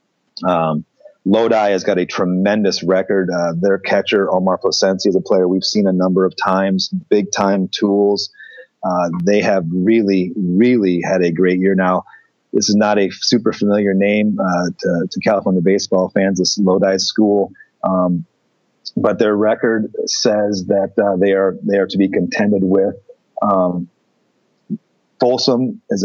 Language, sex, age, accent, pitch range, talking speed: English, male, 30-49, American, 95-110 Hz, 160 wpm